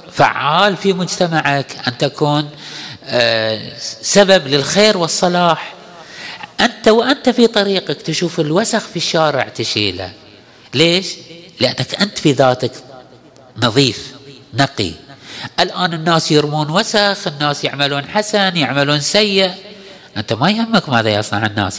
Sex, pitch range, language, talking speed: male, 130-195 Hz, Arabic, 105 wpm